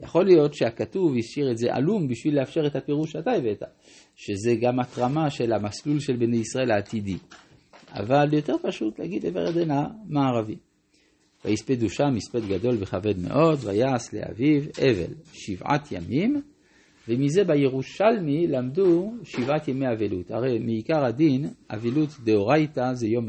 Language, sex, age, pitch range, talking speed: Hebrew, male, 50-69, 110-150 Hz, 135 wpm